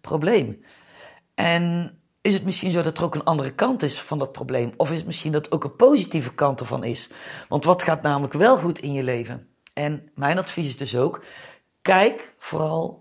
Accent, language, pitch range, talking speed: Dutch, Dutch, 135-170 Hz, 210 wpm